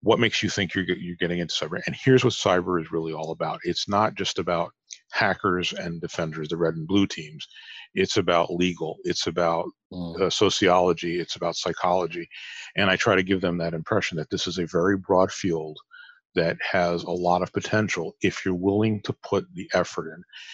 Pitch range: 85-105 Hz